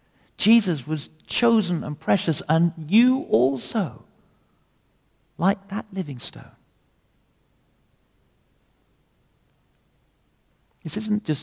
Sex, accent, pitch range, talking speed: male, British, 115-175 Hz, 80 wpm